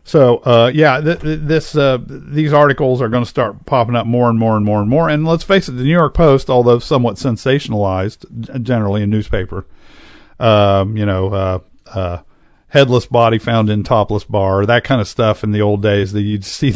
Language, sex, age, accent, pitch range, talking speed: English, male, 50-69, American, 105-135 Hz, 210 wpm